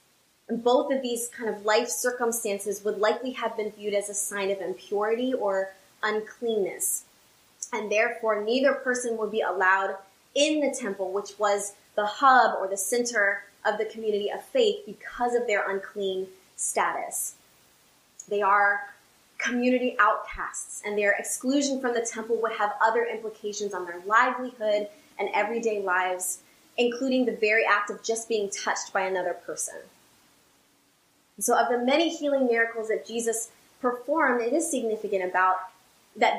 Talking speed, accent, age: 150 wpm, American, 20-39